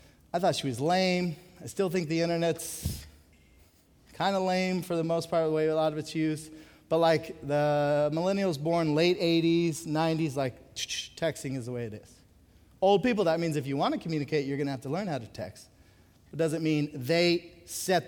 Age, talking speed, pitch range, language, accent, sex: 30-49, 205 wpm, 125-170 Hz, English, American, male